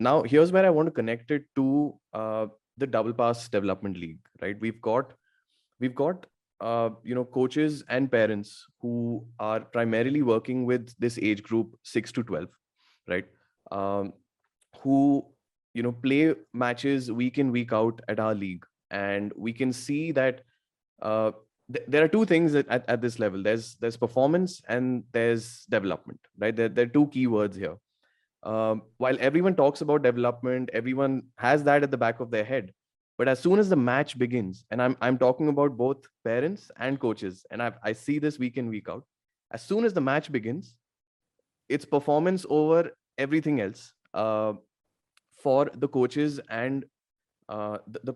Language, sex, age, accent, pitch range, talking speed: English, male, 20-39, Indian, 115-140 Hz, 175 wpm